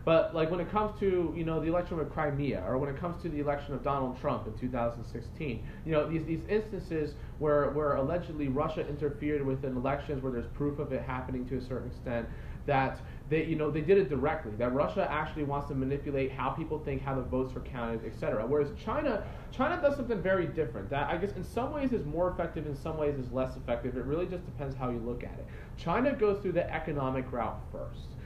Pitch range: 125-160 Hz